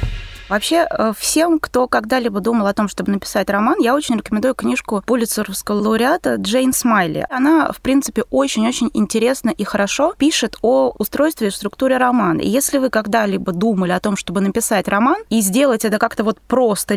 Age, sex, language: 20-39, female, Russian